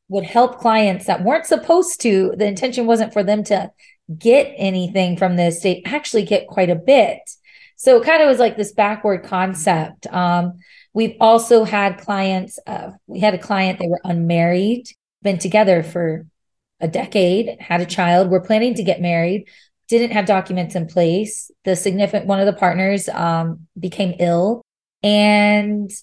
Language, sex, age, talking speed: English, female, 20-39, 170 wpm